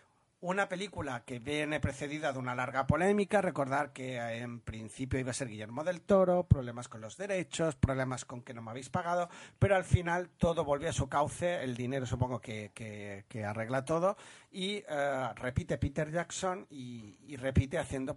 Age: 40-59